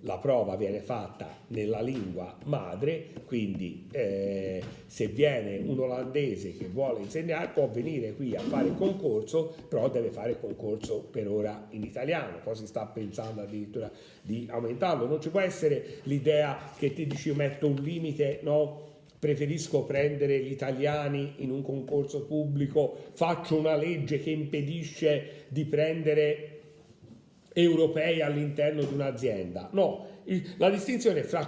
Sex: male